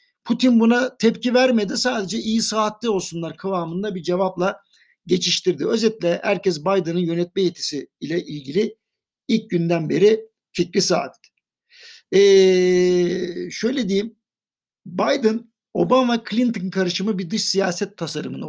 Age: 60-79